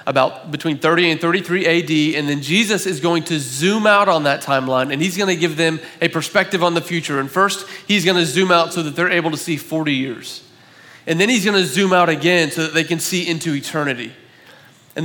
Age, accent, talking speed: 30-49, American, 225 wpm